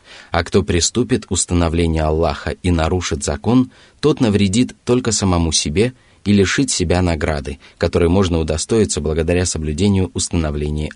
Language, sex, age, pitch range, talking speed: Russian, male, 30-49, 85-105 Hz, 130 wpm